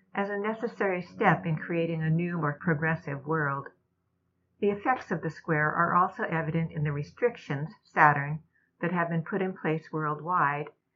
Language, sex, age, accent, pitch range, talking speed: English, female, 60-79, American, 150-190 Hz, 165 wpm